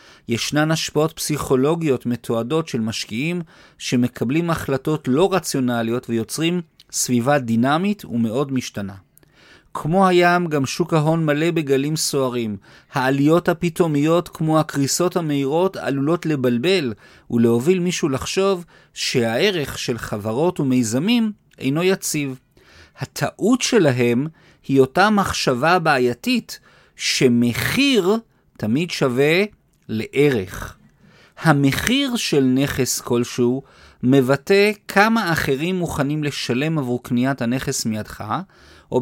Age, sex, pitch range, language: 40-59, male, 125-175 Hz, Hebrew